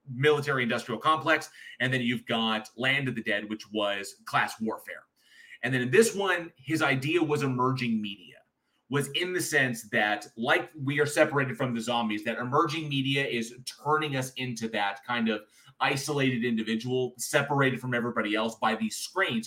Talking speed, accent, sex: 175 wpm, American, male